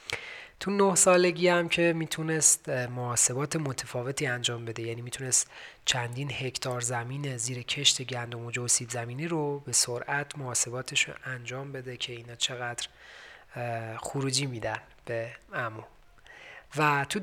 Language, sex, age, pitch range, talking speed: Persian, male, 30-49, 125-150 Hz, 130 wpm